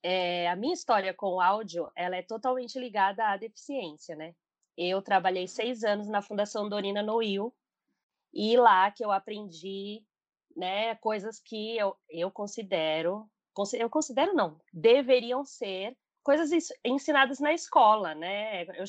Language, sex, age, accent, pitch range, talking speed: Portuguese, female, 20-39, Brazilian, 185-245 Hz, 140 wpm